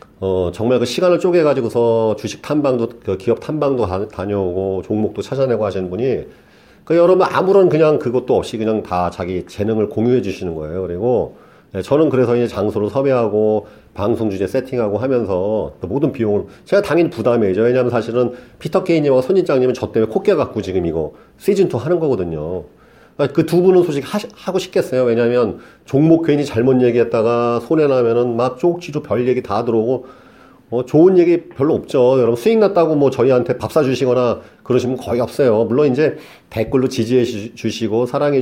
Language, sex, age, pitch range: Korean, male, 40-59, 110-150 Hz